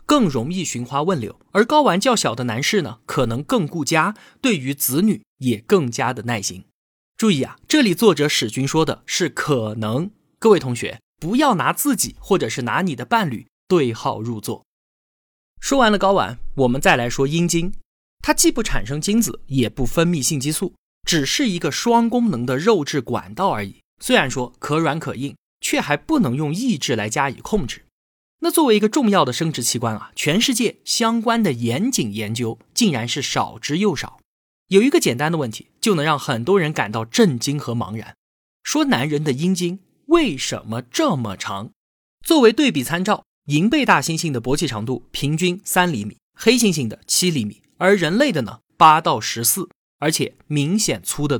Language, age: Chinese, 20-39